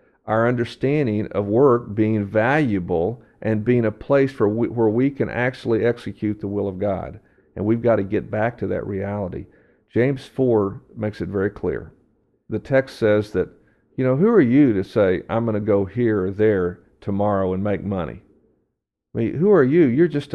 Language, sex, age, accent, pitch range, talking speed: English, male, 50-69, American, 100-125 Hz, 190 wpm